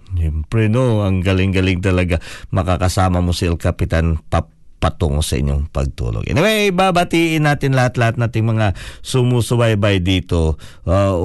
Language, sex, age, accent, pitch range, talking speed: English, male, 50-69, Filipino, 90-125 Hz, 115 wpm